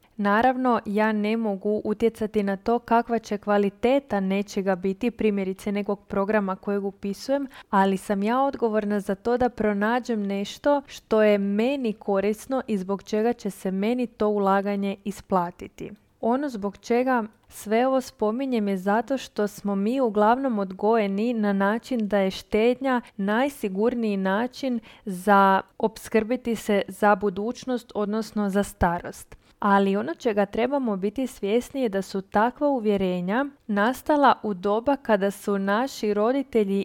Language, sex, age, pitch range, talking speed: Croatian, female, 20-39, 200-245 Hz, 140 wpm